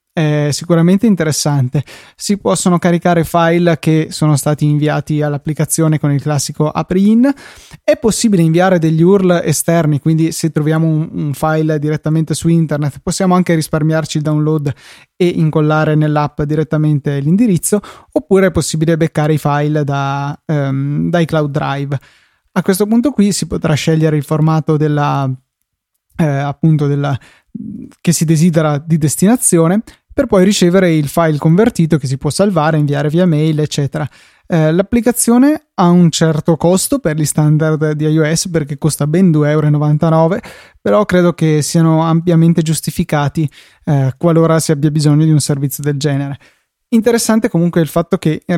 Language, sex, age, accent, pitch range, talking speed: Italian, male, 20-39, native, 150-175 Hz, 145 wpm